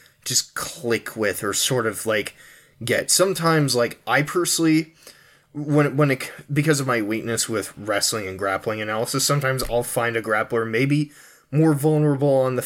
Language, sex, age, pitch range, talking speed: English, male, 20-39, 115-150 Hz, 160 wpm